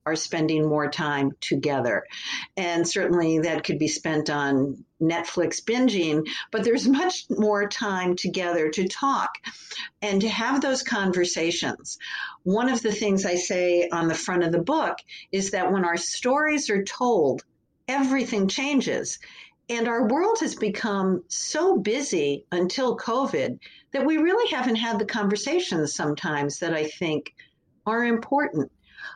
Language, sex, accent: English, female, American